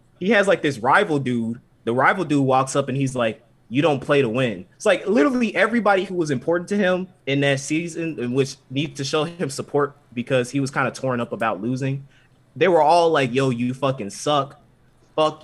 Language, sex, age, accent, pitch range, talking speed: English, male, 20-39, American, 125-155 Hz, 215 wpm